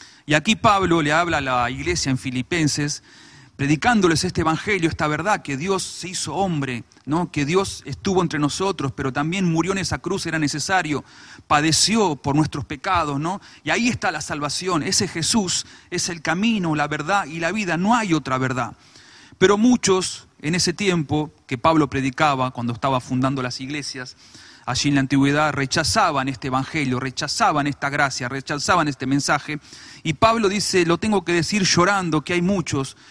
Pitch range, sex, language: 135-170 Hz, male, Spanish